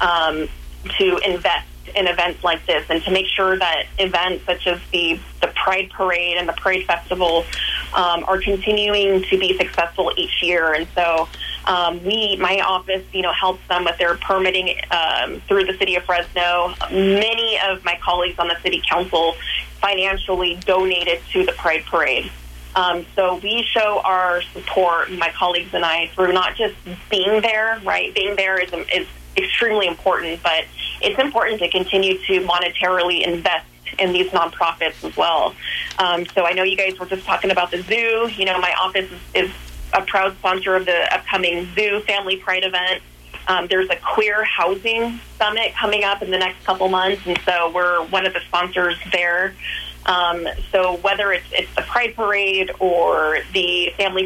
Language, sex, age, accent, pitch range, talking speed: English, female, 20-39, American, 175-195 Hz, 175 wpm